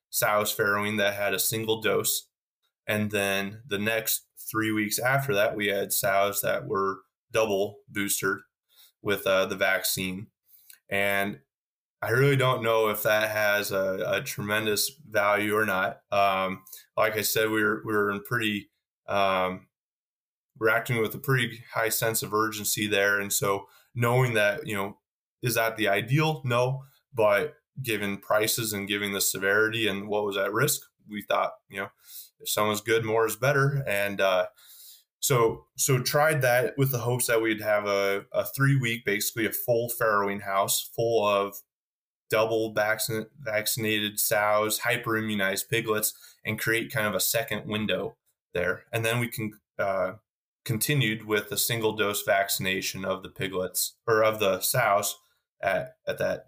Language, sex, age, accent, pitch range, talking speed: English, male, 20-39, American, 100-115 Hz, 160 wpm